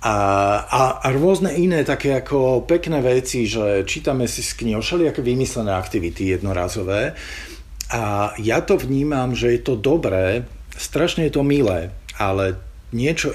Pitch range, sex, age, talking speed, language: 105-140 Hz, male, 50-69, 145 wpm, Slovak